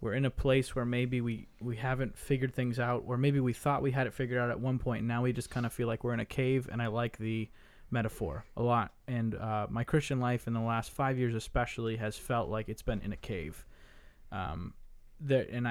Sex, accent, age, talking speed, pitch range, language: male, American, 20-39, 245 wpm, 115-130 Hz, English